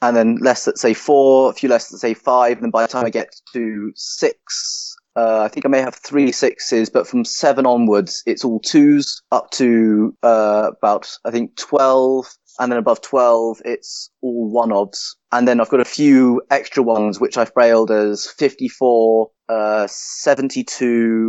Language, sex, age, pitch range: English, male, 20-39, 115-140 Hz